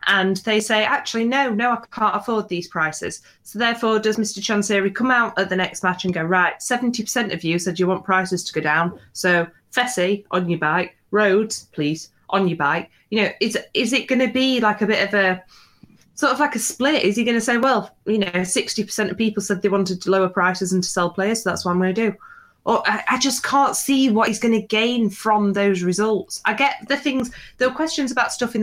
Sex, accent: female, British